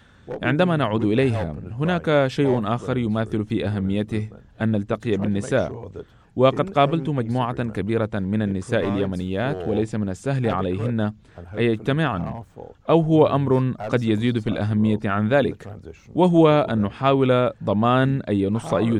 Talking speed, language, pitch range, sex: 130 wpm, Arabic, 100-120 Hz, male